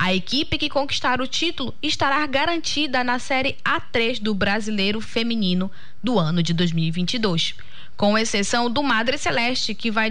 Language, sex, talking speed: Portuguese, female, 150 wpm